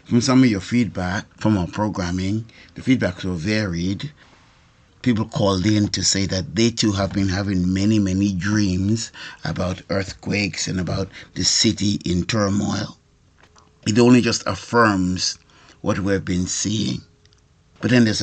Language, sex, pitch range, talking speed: English, male, 95-110 Hz, 150 wpm